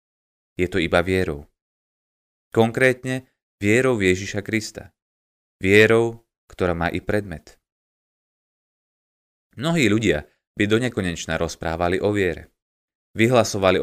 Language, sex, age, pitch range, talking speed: Slovak, male, 30-49, 80-110 Hz, 95 wpm